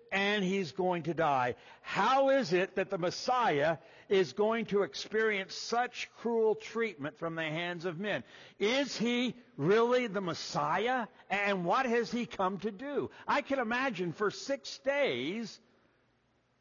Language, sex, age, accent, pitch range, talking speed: English, male, 60-79, American, 150-215 Hz, 150 wpm